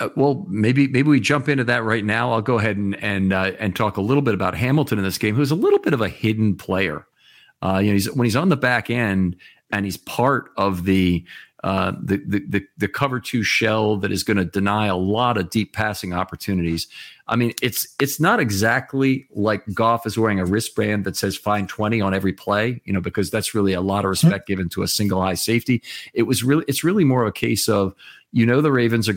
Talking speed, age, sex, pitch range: 235 wpm, 40-59, male, 100-120 Hz